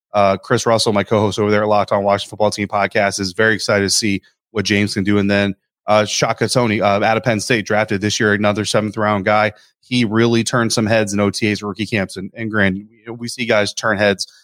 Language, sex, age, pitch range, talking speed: English, male, 30-49, 100-110 Hz, 235 wpm